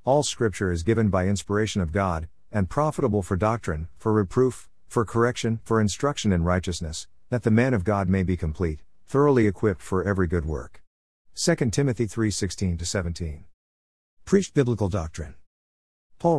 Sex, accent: male, American